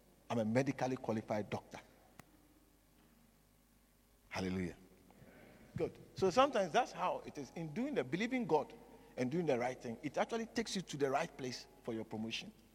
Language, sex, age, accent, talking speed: English, male, 50-69, Nigerian, 160 wpm